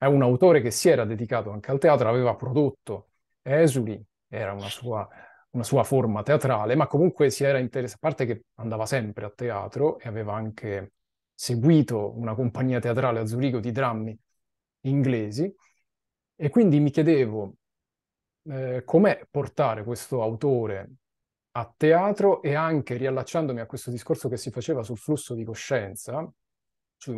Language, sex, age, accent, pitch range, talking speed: Italian, male, 30-49, native, 110-135 Hz, 150 wpm